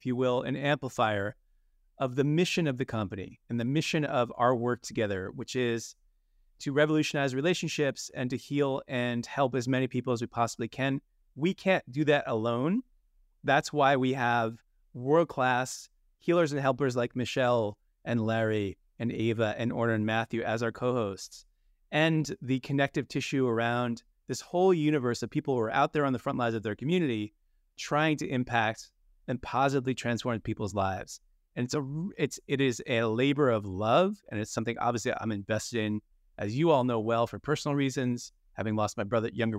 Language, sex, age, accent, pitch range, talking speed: English, male, 30-49, American, 110-140 Hz, 180 wpm